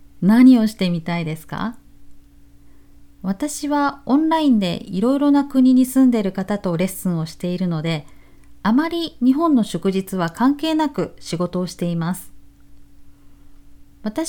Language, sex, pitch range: Japanese, female, 175-255 Hz